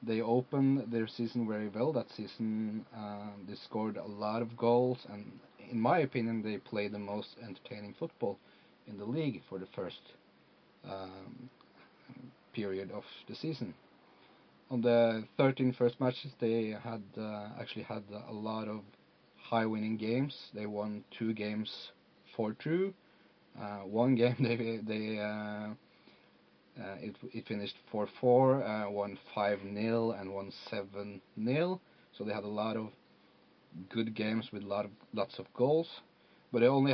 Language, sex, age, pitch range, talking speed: English, male, 30-49, 105-125 Hz, 150 wpm